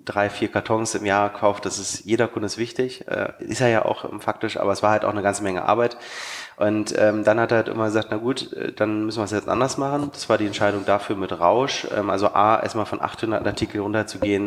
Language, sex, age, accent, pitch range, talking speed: German, male, 20-39, German, 100-110 Hz, 230 wpm